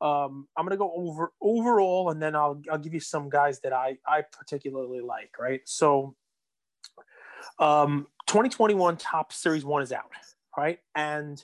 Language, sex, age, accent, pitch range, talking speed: English, male, 20-39, American, 140-175 Hz, 165 wpm